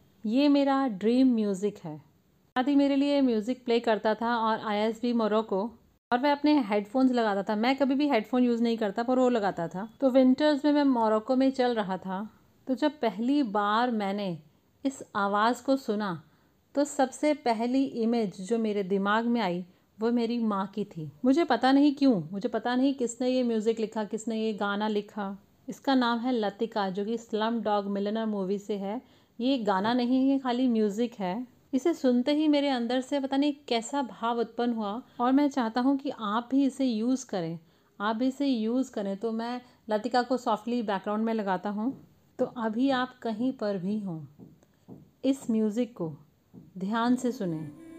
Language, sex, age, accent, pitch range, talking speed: Hindi, female, 40-59, native, 210-260 Hz, 185 wpm